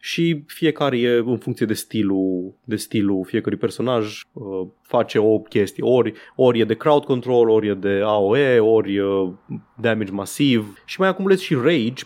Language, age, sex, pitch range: Romanian, 20-39, male, 110-145 Hz